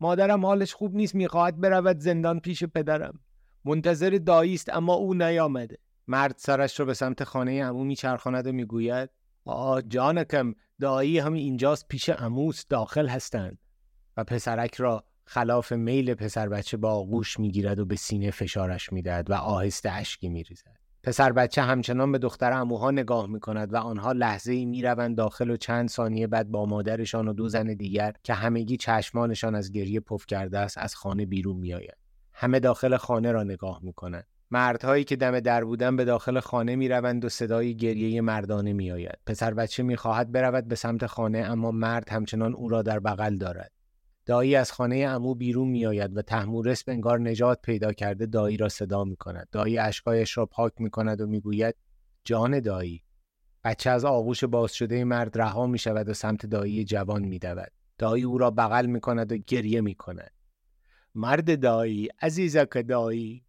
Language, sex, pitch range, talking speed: Persian, male, 110-135 Hz, 175 wpm